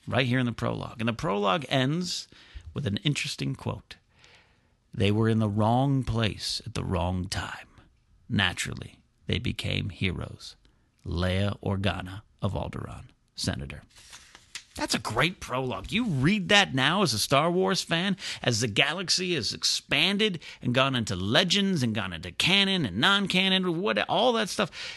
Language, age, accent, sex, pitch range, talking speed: English, 40-59, American, male, 95-140 Hz, 155 wpm